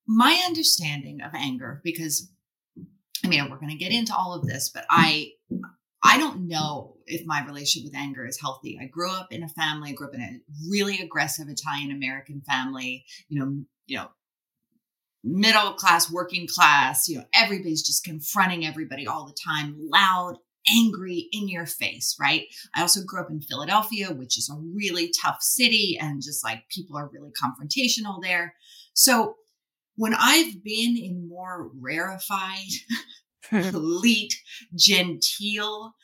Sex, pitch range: female, 150-200 Hz